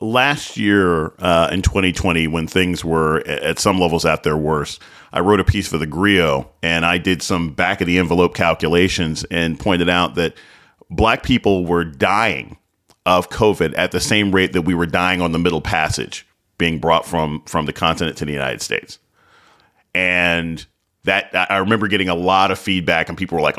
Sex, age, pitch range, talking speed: male, 40-59, 85-100 Hz, 190 wpm